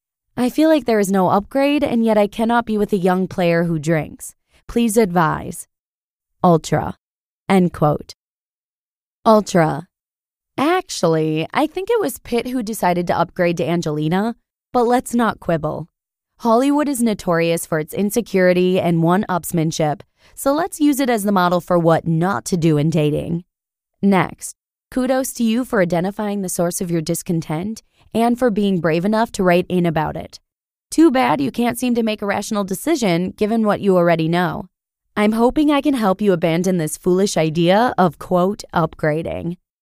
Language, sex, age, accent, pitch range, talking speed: English, female, 20-39, American, 170-235 Hz, 165 wpm